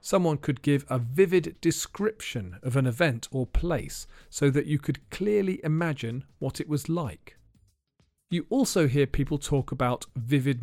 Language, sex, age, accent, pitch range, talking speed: English, male, 40-59, British, 110-155 Hz, 160 wpm